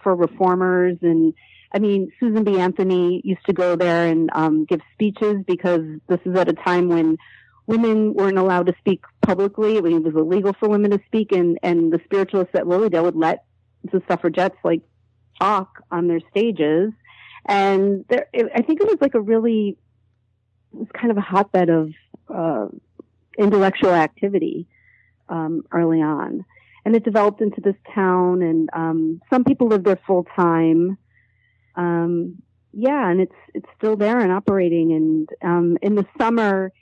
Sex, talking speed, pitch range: female, 170 wpm, 165-200 Hz